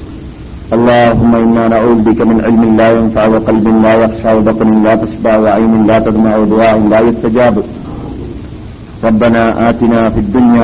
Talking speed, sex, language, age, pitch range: 135 wpm, male, Malayalam, 50-69, 115-155 Hz